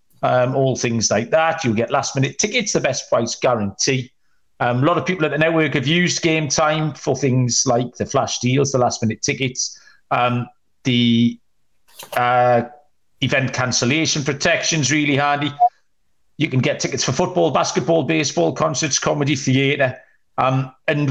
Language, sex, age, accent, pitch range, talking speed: English, male, 40-59, British, 125-155 Hz, 160 wpm